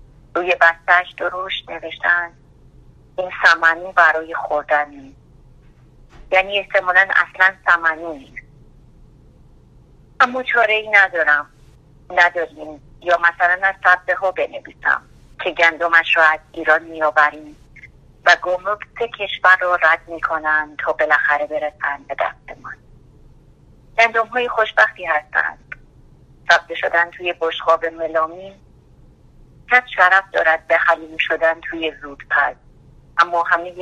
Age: 30-49